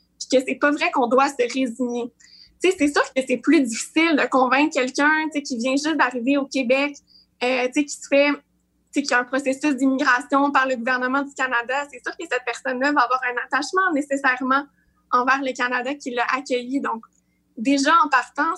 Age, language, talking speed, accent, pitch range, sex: 20-39, French, 190 wpm, Canadian, 250-290 Hz, female